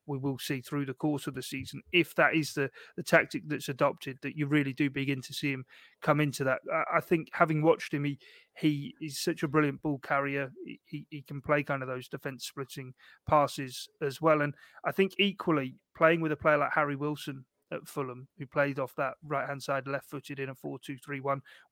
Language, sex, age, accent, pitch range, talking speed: English, male, 30-49, British, 135-155 Hz, 210 wpm